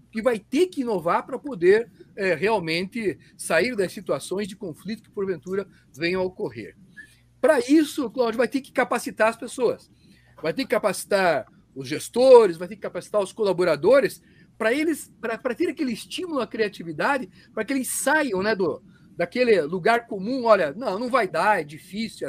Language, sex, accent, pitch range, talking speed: Portuguese, male, Brazilian, 180-255 Hz, 170 wpm